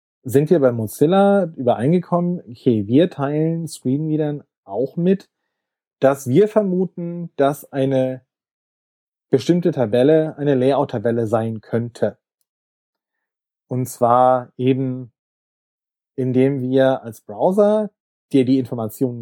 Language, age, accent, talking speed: German, 30-49, German, 100 wpm